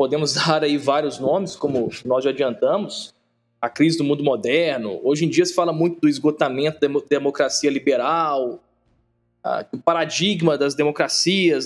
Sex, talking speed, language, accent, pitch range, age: male, 150 wpm, Portuguese, Brazilian, 140-180 Hz, 20-39